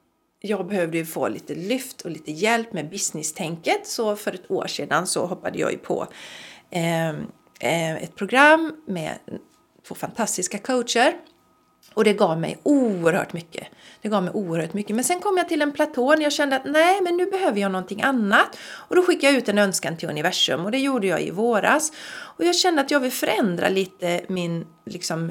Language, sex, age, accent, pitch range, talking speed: Swedish, female, 40-59, native, 190-300 Hz, 190 wpm